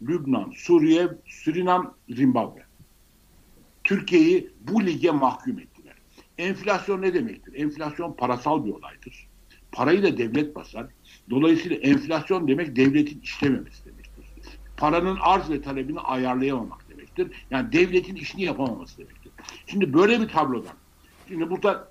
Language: Turkish